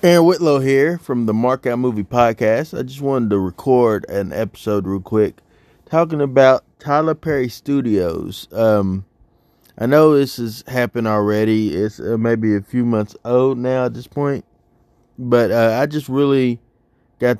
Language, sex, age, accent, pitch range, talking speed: English, male, 20-39, American, 105-130 Hz, 160 wpm